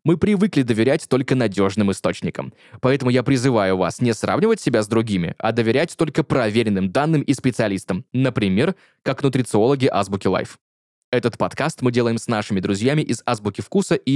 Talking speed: 160 wpm